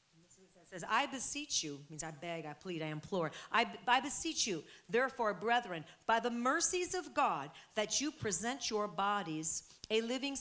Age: 40-59